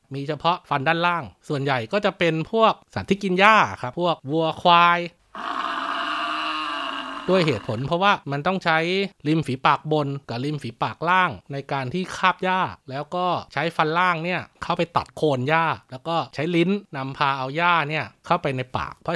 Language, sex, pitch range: Thai, male, 140-180 Hz